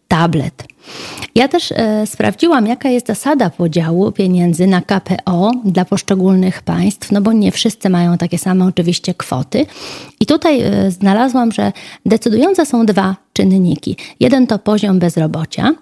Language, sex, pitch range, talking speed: Polish, female, 180-230 Hz, 135 wpm